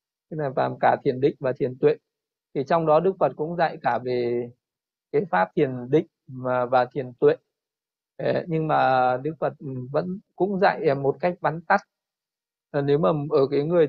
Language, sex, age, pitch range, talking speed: Vietnamese, male, 20-39, 135-175 Hz, 170 wpm